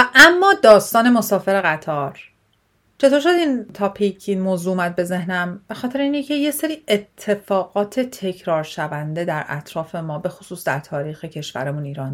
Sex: female